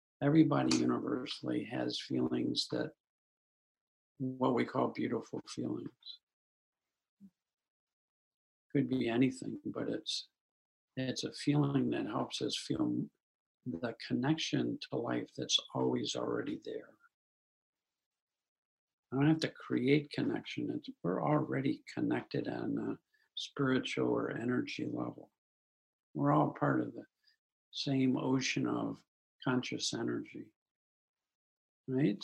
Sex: male